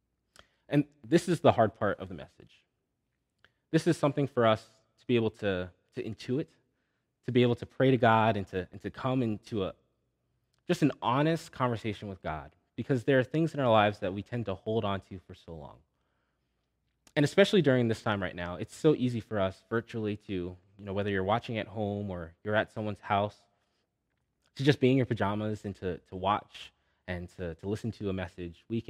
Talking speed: 210 wpm